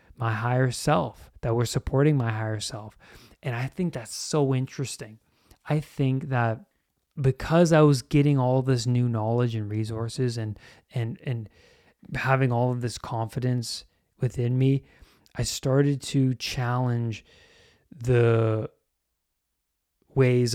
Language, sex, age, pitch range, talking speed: English, male, 20-39, 105-130 Hz, 125 wpm